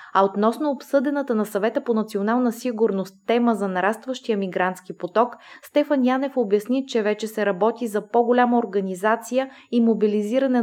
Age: 20-39